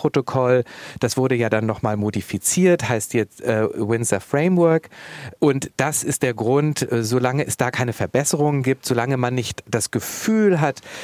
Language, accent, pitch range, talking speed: German, German, 115-140 Hz, 160 wpm